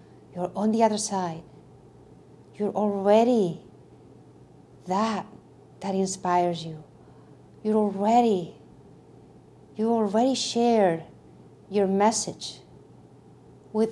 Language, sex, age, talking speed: English, female, 40-59, 80 wpm